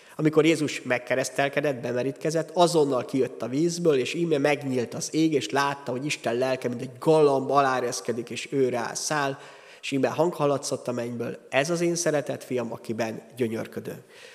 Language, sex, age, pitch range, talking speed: Hungarian, male, 30-49, 130-170 Hz, 155 wpm